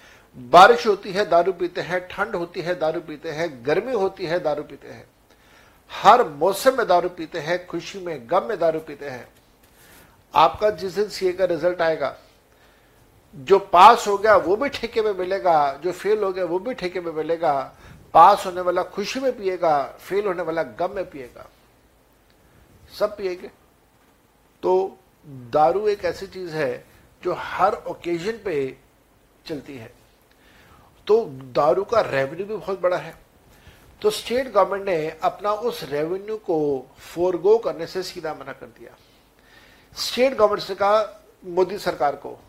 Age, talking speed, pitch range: 60-79, 155 wpm, 165-210 Hz